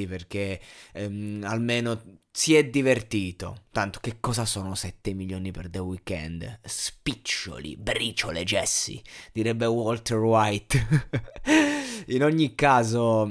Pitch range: 110-135 Hz